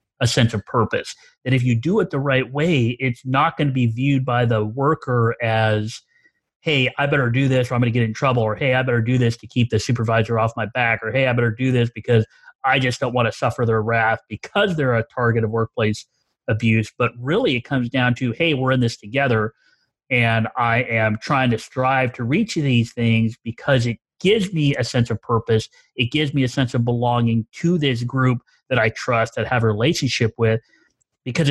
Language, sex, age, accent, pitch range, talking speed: English, male, 30-49, American, 115-135 Hz, 225 wpm